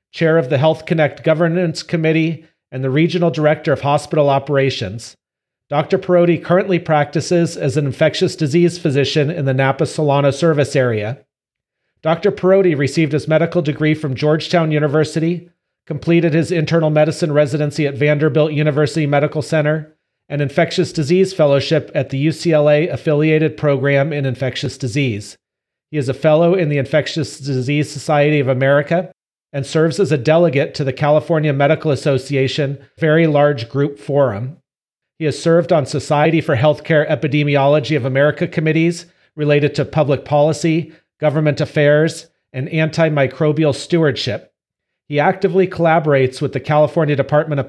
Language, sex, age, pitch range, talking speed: English, male, 40-59, 140-165 Hz, 140 wpm